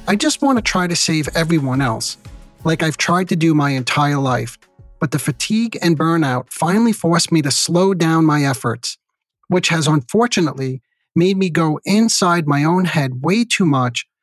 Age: 40-59